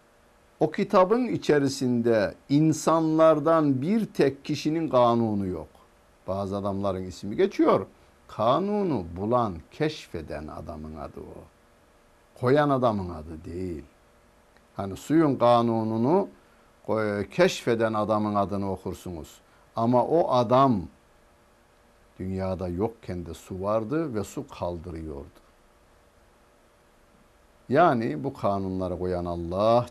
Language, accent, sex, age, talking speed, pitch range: Turkish, native, male, 60-79, 90 wpm, 95-150 Hz